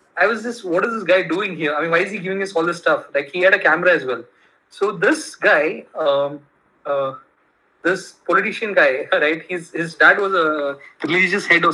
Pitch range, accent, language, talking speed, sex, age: 150-190 Hz, Indian, English, 220 wpm, male, 20-39